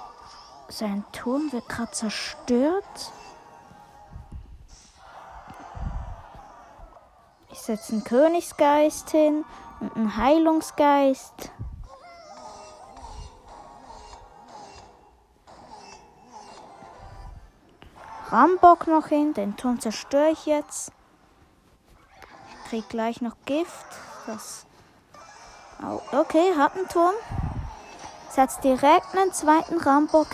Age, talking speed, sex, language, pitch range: 20-39, 75 wpm, female, German, 250-330 Hz